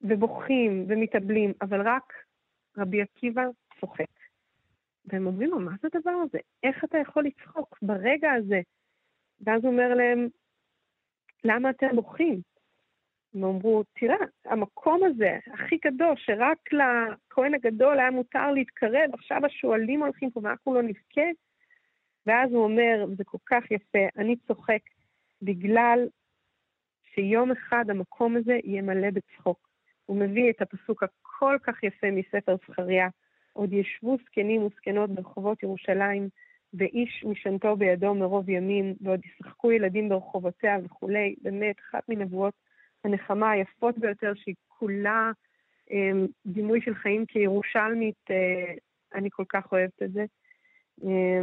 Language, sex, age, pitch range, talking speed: Hebrew, female, 40-59, 195-250 Hz, 125 wpm